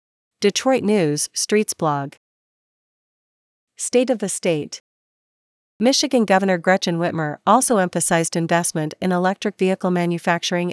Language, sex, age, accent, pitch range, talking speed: English, female, 40-59, American, 165-200 Hz, 105 wpm